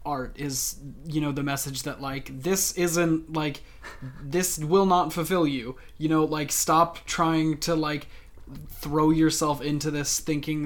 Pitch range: 130-150 Hz